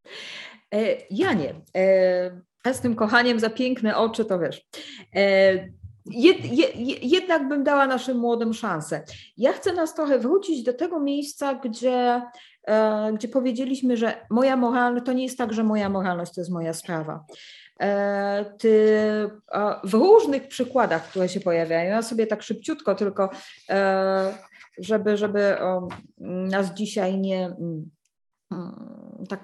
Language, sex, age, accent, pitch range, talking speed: English, female, 30-49, Polish, 190-230 Hz, 120 wpm